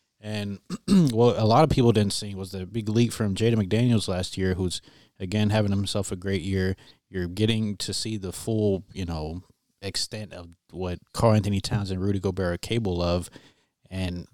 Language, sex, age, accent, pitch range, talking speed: English, male, 20-39, American, 95-110 Hz, 190 wpm